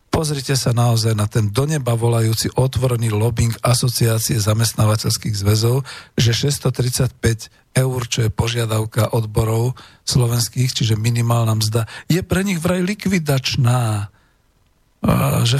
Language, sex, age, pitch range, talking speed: Slovak, male, 50-69, 110-140 Hz, 115 wpm